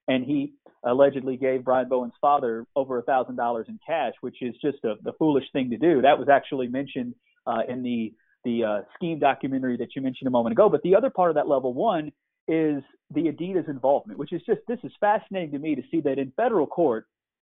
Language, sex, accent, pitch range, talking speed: English, male, American, 140-190 Hz, 215 wpm